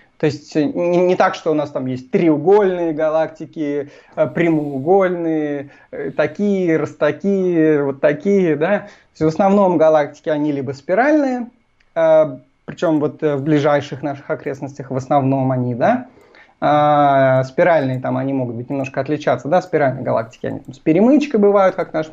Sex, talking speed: male, 120 wpm